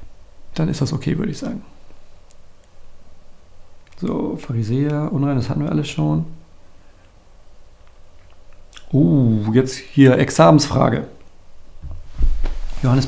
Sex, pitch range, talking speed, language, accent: male, 105-150 Hz, 90 wpm, German, German